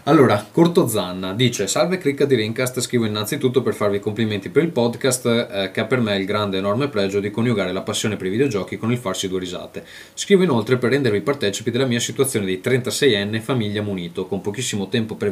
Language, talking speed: Italian, 210 wpm